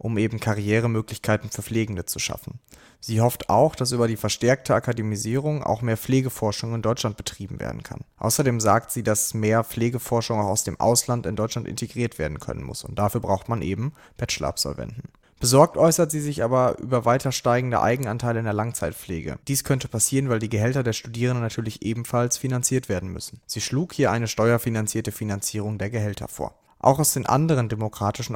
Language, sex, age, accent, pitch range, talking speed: German, male, 30-49, German, 105-125 Hz, 180 wpm